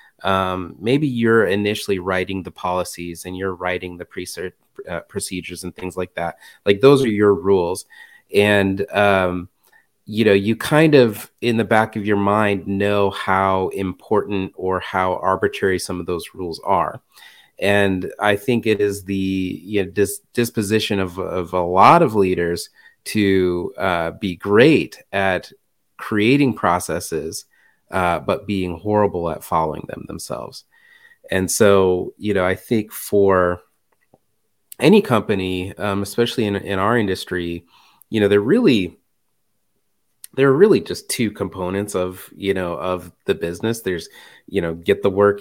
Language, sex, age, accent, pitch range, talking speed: English, male, 30-49, American, 95-110 Hz, 145 wpm